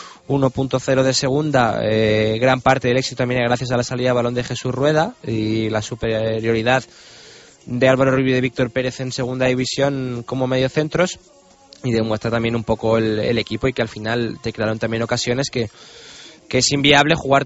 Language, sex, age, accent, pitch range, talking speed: Spanish, male, 20-39, Spanish, 115-130 Hz, 185 wpm